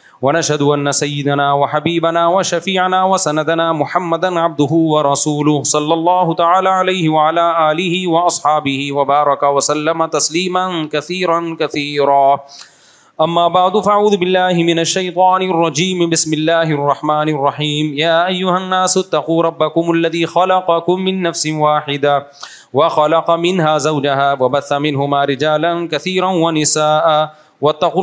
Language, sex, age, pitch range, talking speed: Urdu, male, 30-49, 150-170 Hz, 110 wpm